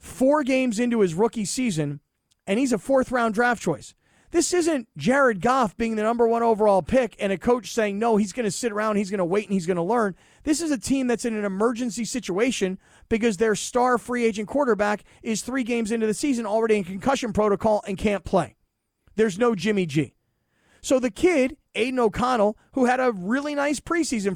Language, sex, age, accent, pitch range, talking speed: English, male, 30-49, American, 190-250 Hz, 205 wpm